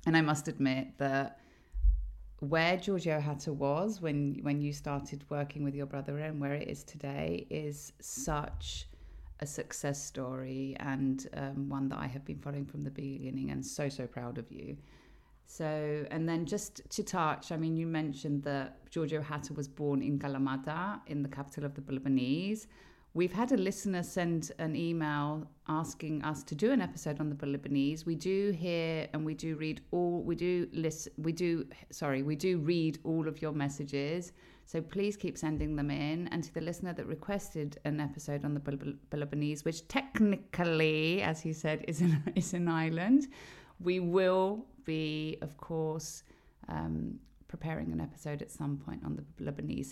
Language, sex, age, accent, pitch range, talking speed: Greek, female, 30-49, British, 140-170 Hz, 175 wpm